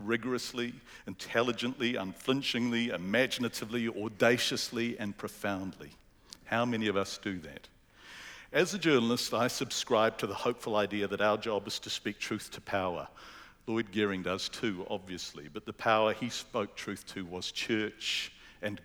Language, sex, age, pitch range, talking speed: English, male, 50-69, 105-125 Hz, 145 wpm